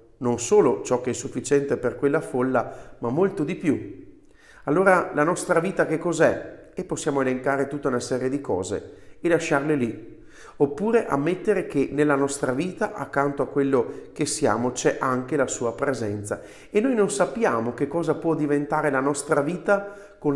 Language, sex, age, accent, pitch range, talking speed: Italian, male, 40-59, native, 125-165 Hz, 170 wpm